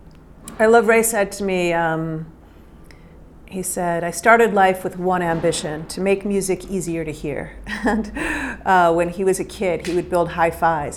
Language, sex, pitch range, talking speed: English, female, 165-200 Hz, 175 wpm